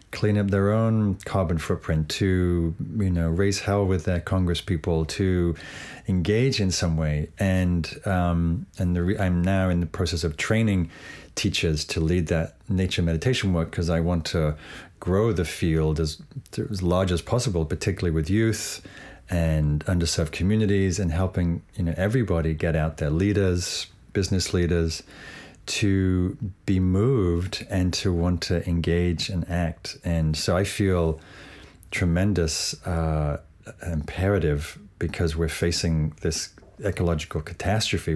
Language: English